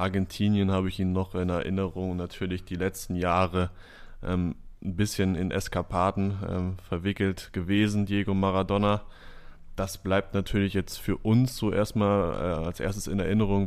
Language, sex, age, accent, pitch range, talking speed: German, male, 20-39, German, 90-100 Hz, 135 wpm